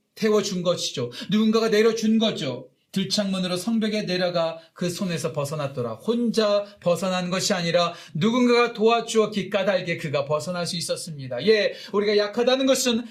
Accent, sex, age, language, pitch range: native, male, 40-59, Korean, 120-185 Hz